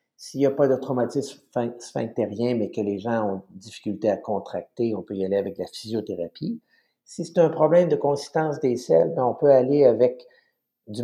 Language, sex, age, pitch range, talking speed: French, male, 50-69, 110-140 Hz, 190 wpm